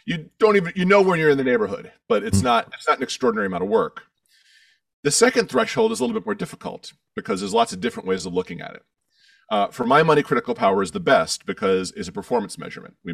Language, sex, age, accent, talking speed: French, male, 40-59, American, 245 wpm